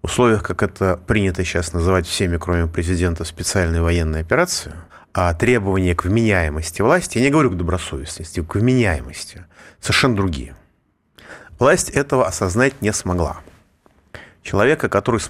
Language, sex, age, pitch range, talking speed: Russian, male, 30-49, 85-115 Hz, 135 wpm